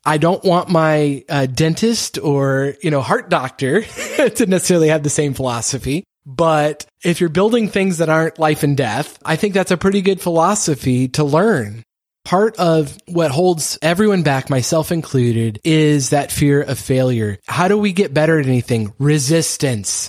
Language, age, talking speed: English, 20-39, 170 wpm